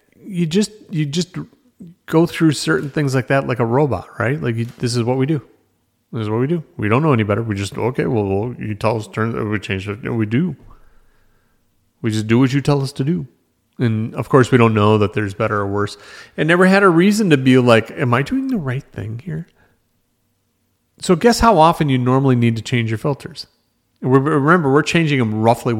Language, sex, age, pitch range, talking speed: English, male, 40-59, 110-145 Hz, 225 wpm